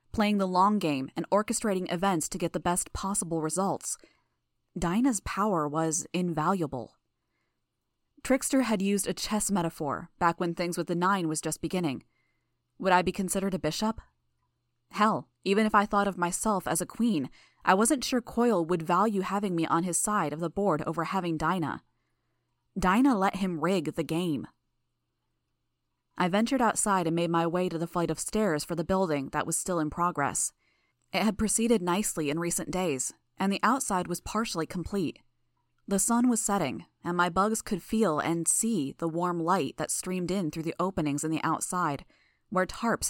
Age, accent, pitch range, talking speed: 20-39, American, 160-200 Hz, 180 wpm